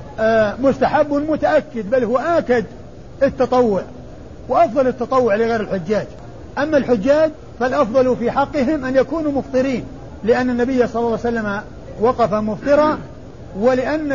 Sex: male